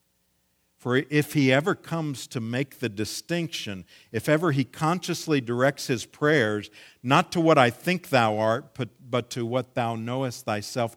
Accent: American